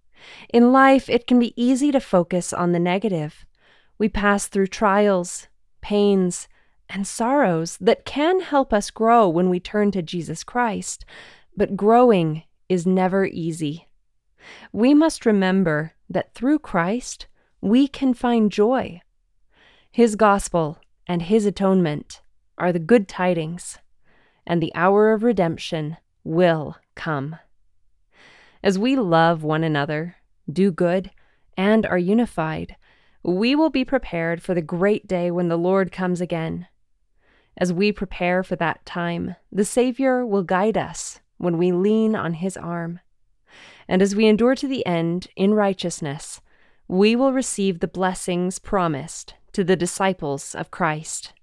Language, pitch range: English, 170-215 Hz